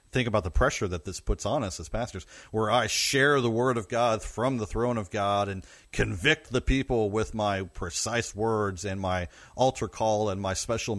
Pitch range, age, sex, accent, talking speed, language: 95-120 Hz, 40-59, male, American, 210 wpm, English